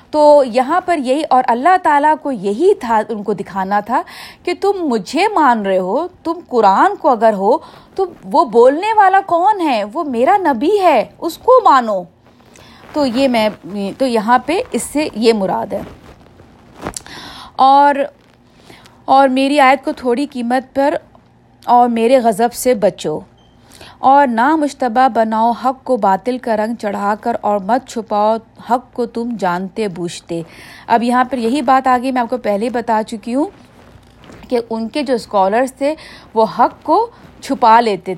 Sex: female